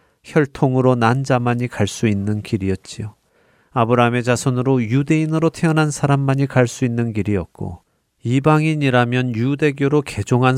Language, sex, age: Korean, male, 40-59